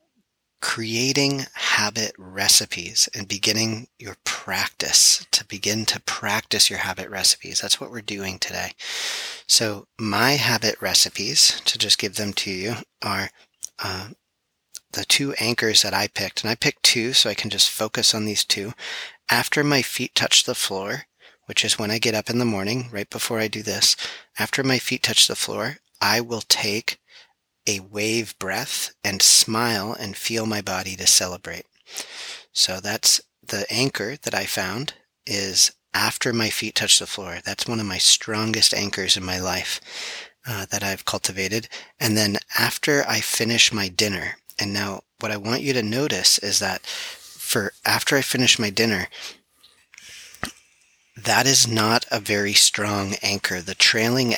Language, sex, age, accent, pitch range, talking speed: English, male, 30-49, American, 100-115 Hz, 165 wpm